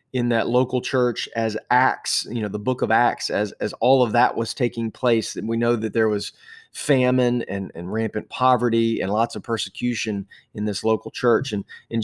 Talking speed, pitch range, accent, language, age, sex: 200 wpm, 115-135 Hz, American, English, 30-49, male